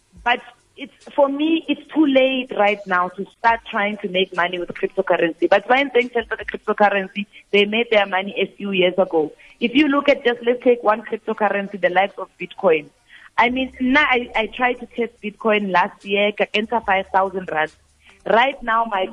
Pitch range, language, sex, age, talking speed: 195-260 Hz, English, female, 30-49, 190 wpm